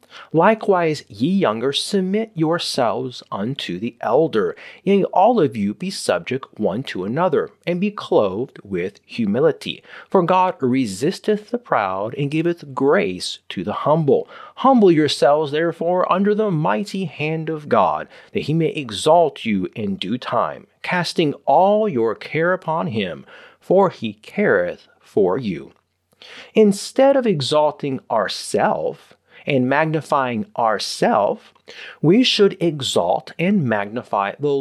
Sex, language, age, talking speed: male, English, 30-49, 130 wpm